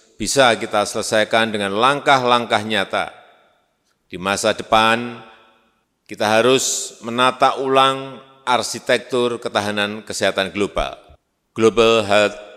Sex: male